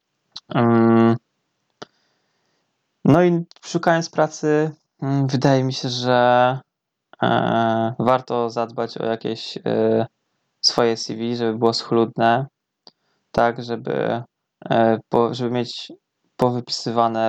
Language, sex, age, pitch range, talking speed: Polish, male, 20-39, 115-130 Hz, 75 wpm